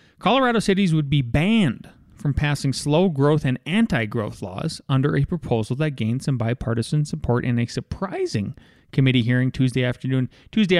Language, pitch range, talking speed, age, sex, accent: English, 125-165 Hz, 150 wpm, 30-49, male, American